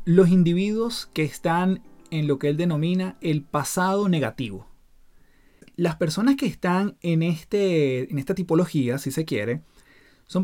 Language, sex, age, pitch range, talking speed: Spanish, male, 30-49, 135-185 Hz, 145 wpm